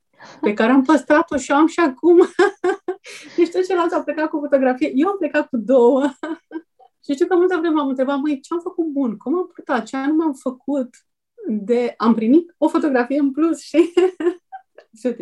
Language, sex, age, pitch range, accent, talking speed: Romanian, female, 30-49, 200-280 Hz, native, 190 wpm